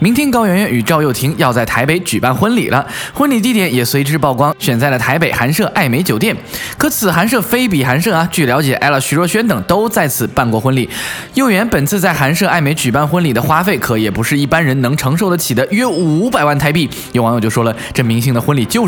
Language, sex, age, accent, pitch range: Chinese, male, 20-39, native, 130-210 Hz